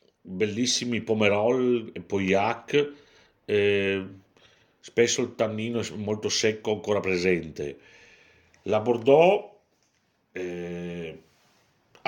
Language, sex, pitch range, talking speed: Italian, male, 100-130 Hz, 85 wpm